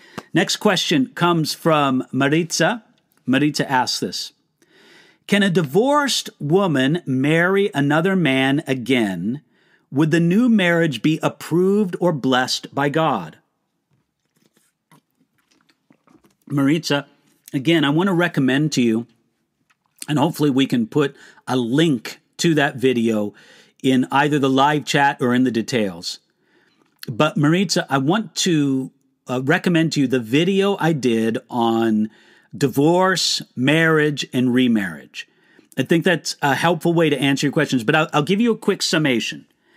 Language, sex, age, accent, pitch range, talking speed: English, male, 50-69, American, 135-175 Hz, 135 wpm